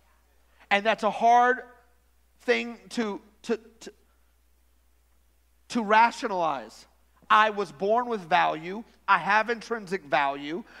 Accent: American